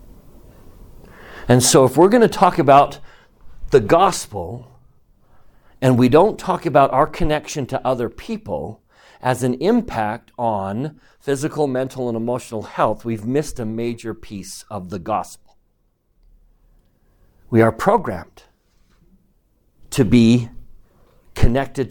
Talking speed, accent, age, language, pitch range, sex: 120 wpm, American, 50-69, English, 110-145 Hz, male